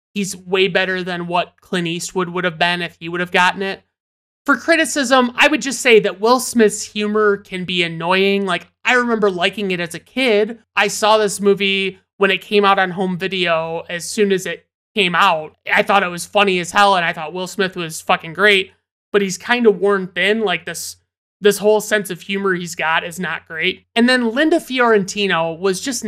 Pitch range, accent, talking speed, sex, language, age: 180-215 Hz, American, 215 wpm, male, English, 30-49